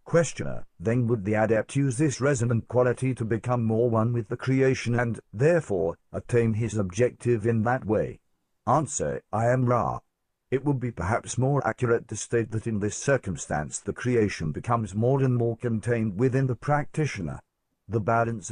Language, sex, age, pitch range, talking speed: English, male, 50-69, 110-130 Hz, 170 wpm